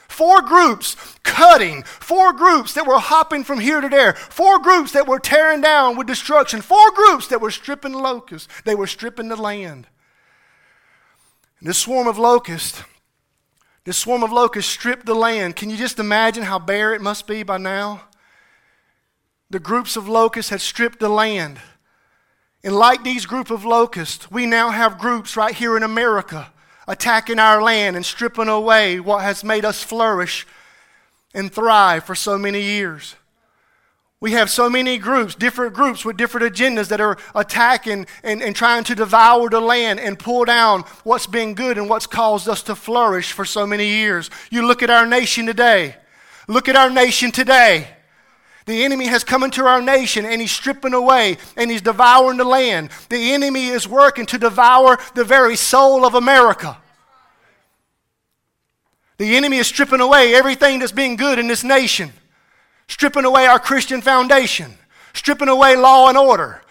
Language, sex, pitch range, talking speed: English, male, 215-265 Hz, 170 wpm